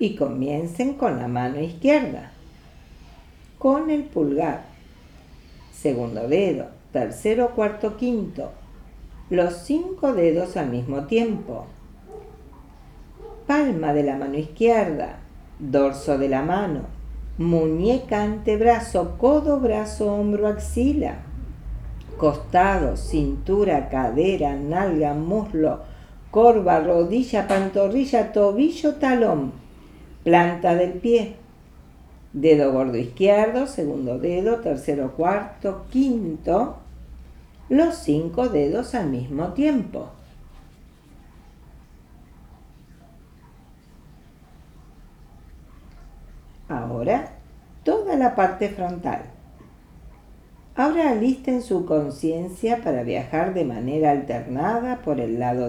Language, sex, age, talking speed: Spanish, female, 50-69, 85 wpm